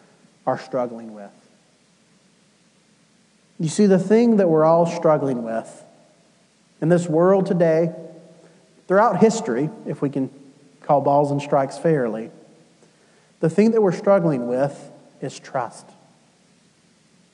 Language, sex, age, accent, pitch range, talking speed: English, male, 40-59, American, 160-215 Hz, 120 wpm